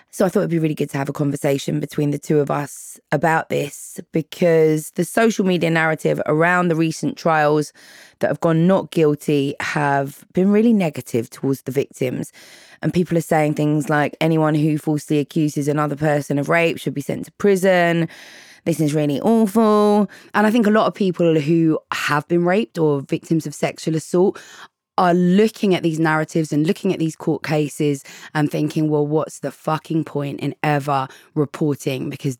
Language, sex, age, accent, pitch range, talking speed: English, female, 20-39, British, 145-170 Hz, 185 wpm